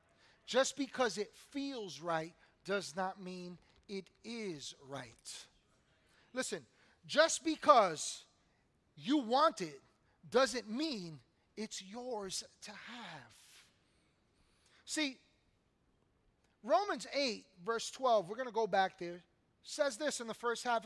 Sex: male